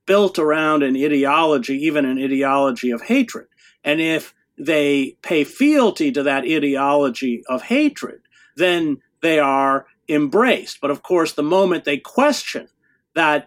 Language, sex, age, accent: English, male, 50-69, American